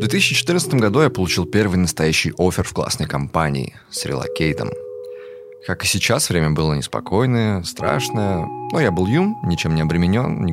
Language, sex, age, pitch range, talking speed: Russian, male, 20-39, 80-130 Hz, 160 wpm